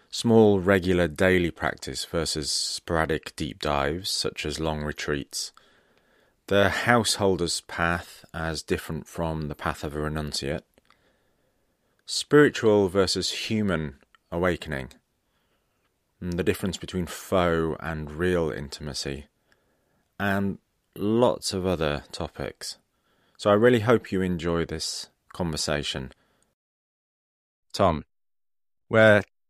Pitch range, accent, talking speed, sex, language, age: 80-95 Hz, British, 100 wpm, male, English, 30-49